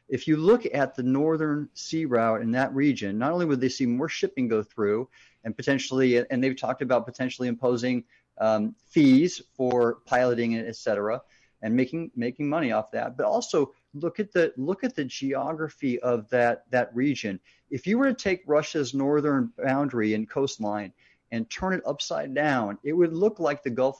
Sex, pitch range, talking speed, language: male, 125-165 Hz, 190 wpm, English